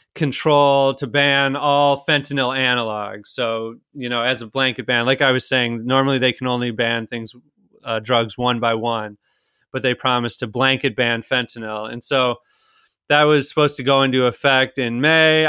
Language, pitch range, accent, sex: English, 115-135 Hz, American, male